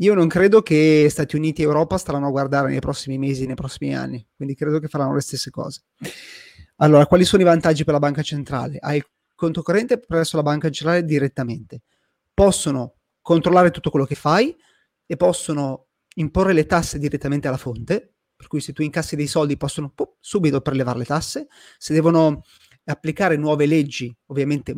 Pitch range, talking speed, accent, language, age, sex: 140-175 Hz, 180 wpm, native, Italian, 30-49, male